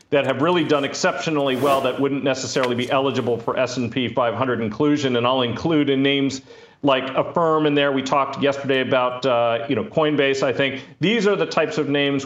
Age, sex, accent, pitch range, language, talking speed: 40-59, male, American, 130-155 Hz, English, 200 wpm